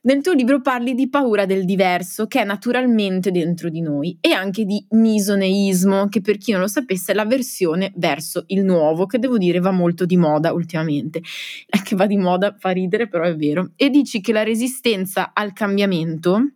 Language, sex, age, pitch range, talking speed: Italian, female, 20-39, 190-240 Hz, 190 wpm